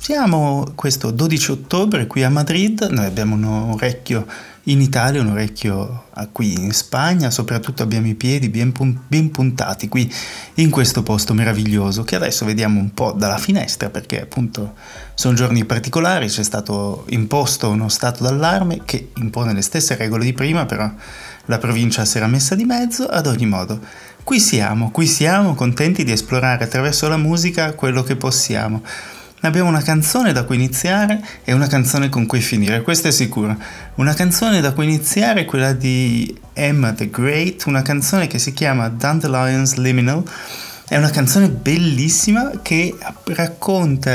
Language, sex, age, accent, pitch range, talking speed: Italian, male, 20-39, native, 110-155 Hz, 160 wpm